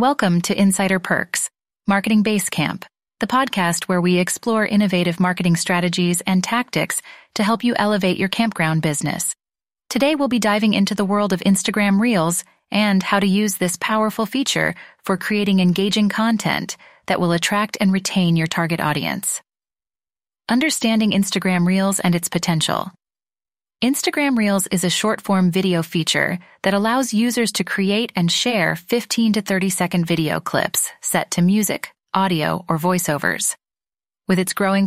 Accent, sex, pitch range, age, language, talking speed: American, female, 175-215 Hz, 30-49, English, 150 wpm